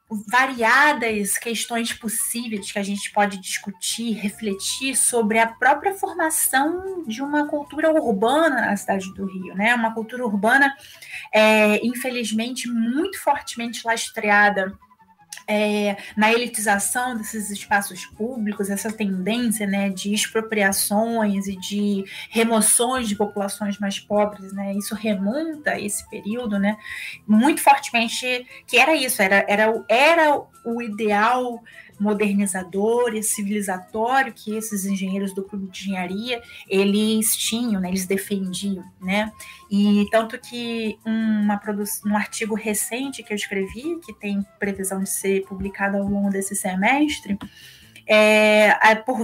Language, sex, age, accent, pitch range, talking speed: Portuguese, female, 20-39, Brazilian, 200-240 Hz, 120 wpm